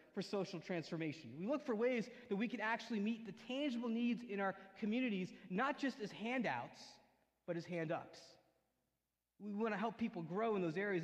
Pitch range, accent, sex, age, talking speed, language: 180-220 Hz, American, male, 30-49, 185 wpm, English